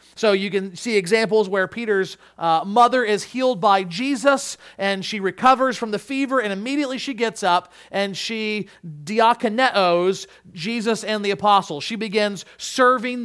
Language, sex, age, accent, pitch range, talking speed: English, male, 40-59, American, 185-255 Hz, 155 wpm